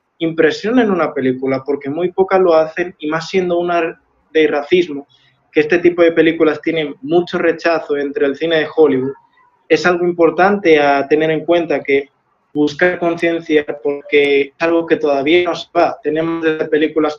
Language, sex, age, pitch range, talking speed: Spanish, male, 20-39, 155-175 Hz, 165 wpm